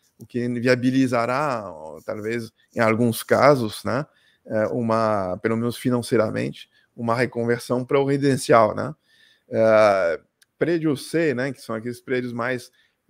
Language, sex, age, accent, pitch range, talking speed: Portuguese, male, 20-39, Brazilian, 115-140 Hz, 125 wpm